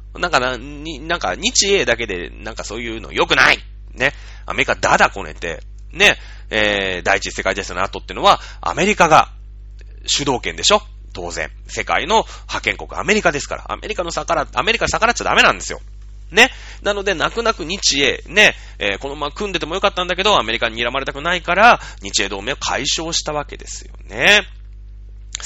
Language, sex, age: Japanese, male, 30-49